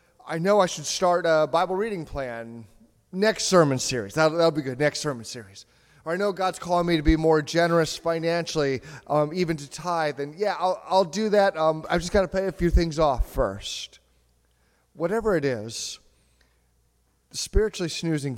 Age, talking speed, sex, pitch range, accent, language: 30-49, 185 wpm, male, 125-165 Hz, American, English